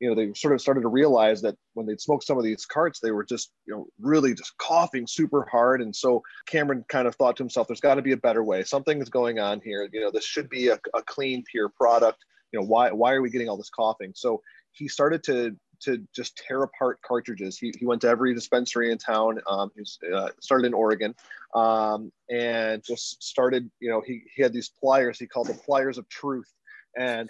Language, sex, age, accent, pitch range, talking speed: English, male, 30-49, American, 110-135 Hz, 235 wpm